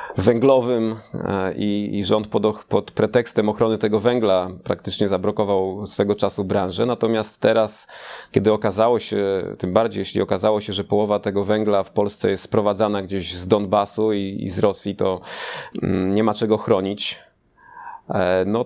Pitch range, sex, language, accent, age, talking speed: 100-115 Hz, male, Polish, native, 30-49, 140 wpm